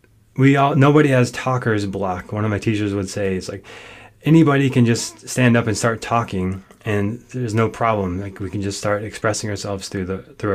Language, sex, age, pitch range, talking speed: English, male, 20-39, 105-120 Hz, 205 wpm